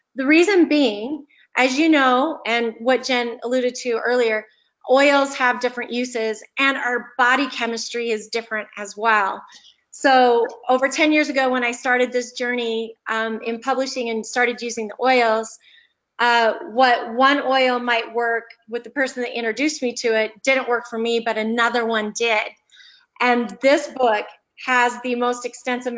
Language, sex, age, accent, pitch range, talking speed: English, female, 30-49, American, 220-250 Hz, 165 wpm